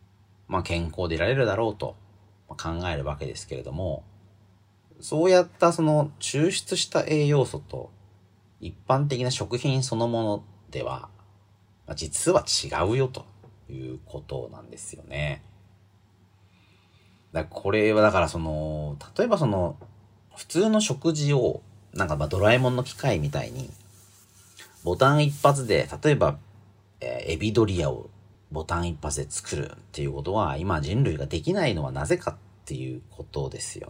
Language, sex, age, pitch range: Japanese, male, 40-59, 85-120 Hz